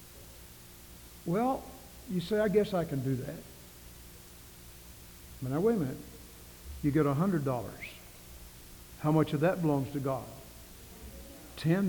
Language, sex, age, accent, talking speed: English, male, 60-79, American, 130 wpm